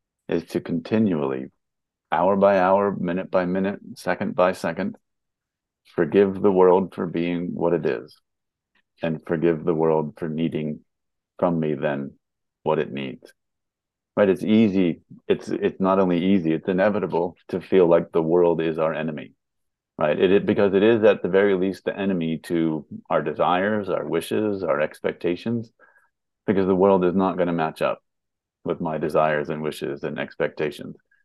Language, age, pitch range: English, 30-49, 85-100 Hz